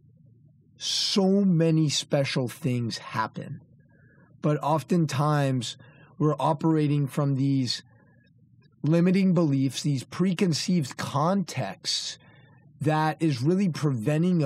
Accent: American